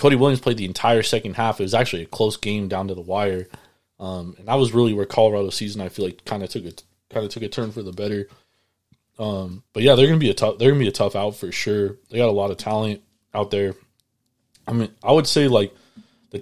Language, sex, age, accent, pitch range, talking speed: English, male, 20-39, American, 100-120 Hz, 265 wpm